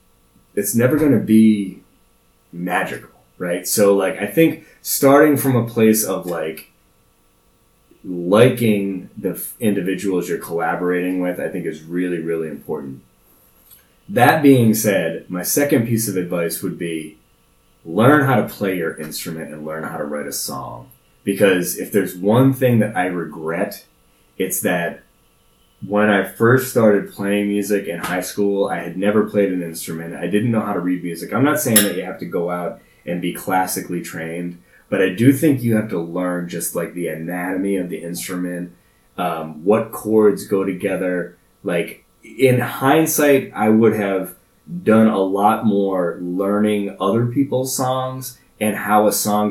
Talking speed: 165 wpm